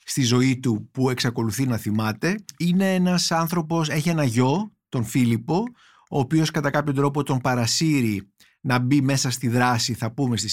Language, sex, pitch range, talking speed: Greek, male, 135-190 Hz, 170 wpm